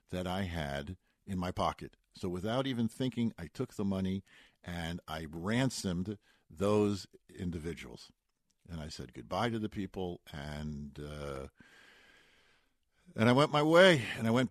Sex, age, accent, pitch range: male, 50-69, American, 90-125 Hz